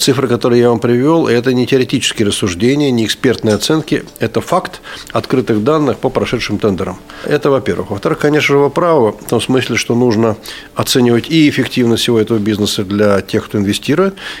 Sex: male